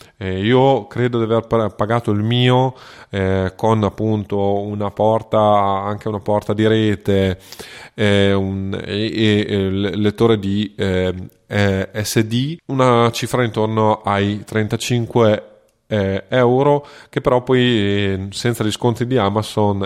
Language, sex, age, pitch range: Italian, male, 20-39, 95-120 Hz